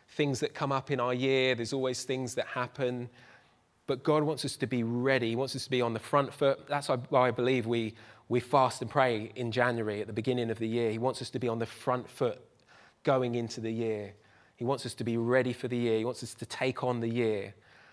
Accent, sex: British, male